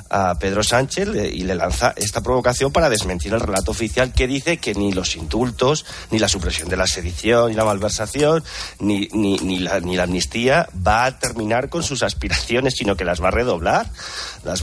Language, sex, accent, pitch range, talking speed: Spanish, male, Spanish, 95-120 Hz, 195 wpm